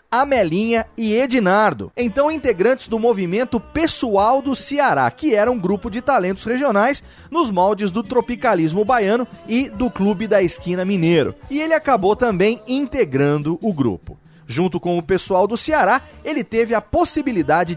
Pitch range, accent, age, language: 185-260 Hz, Brazilian, 30-49, Portuguese